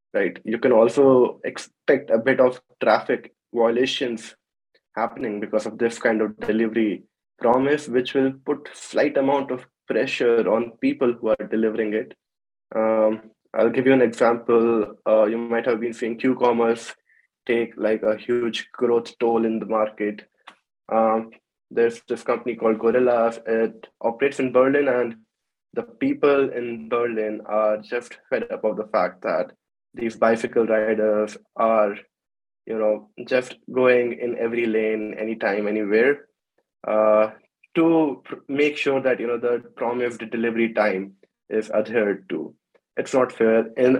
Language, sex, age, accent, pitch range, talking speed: English, male, 20-39, Indian, 110-125 Hz, 145 wpm